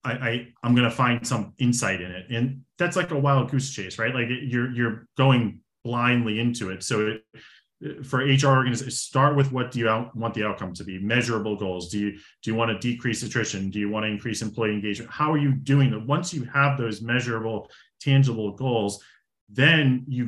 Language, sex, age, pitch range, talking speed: English, male, 30-49, 110-130 Hz, 200 wpm